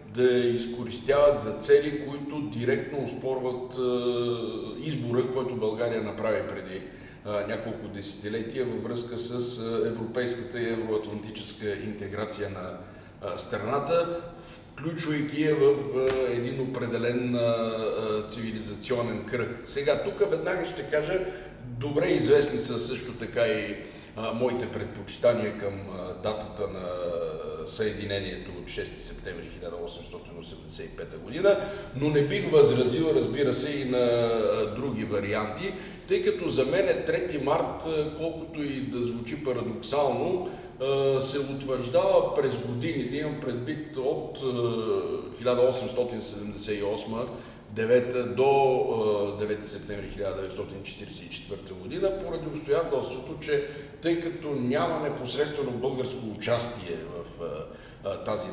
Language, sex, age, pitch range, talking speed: Bulgarian, male, 50-69, 110-145 Hz, 100 wpm